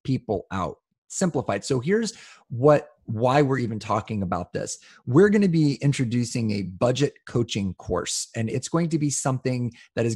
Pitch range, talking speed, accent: 110-150 Hz, 170 wpm, American